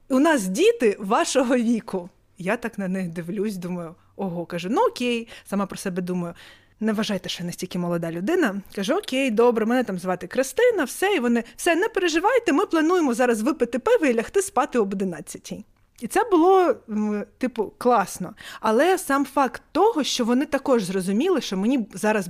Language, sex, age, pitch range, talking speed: Ukrainian, female, 20-39, 200-275 Hz, 175 wpm